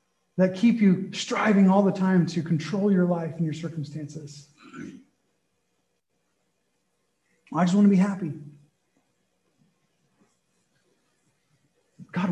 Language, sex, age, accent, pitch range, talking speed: English, male, 30-49, American, 175-240 Hz, 100 wpm